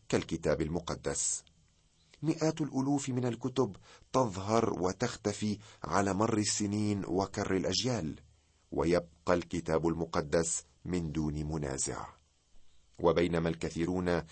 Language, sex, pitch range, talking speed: Arabic, male, 80-105 Hz, 90 wpm